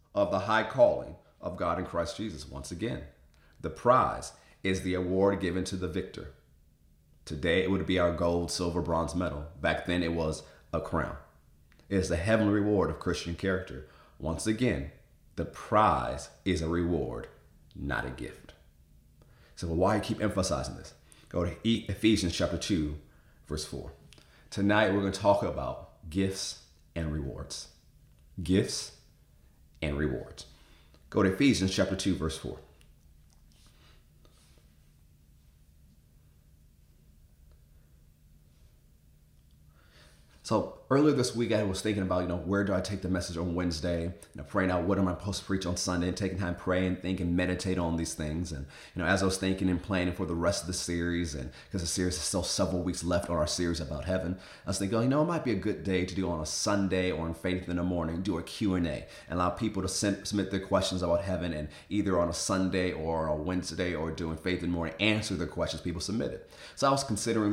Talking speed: 195 wpm